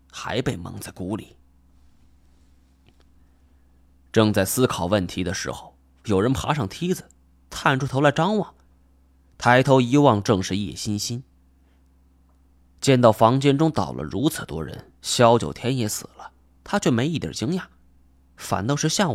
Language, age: Chinese, 20-39